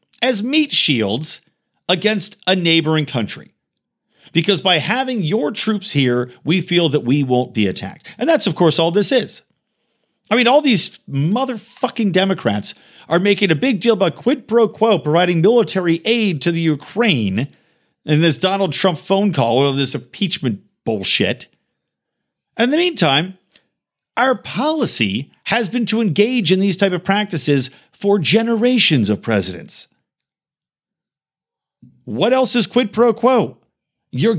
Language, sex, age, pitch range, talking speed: English, male, 50-69, 145-225 Hz, 145 wpm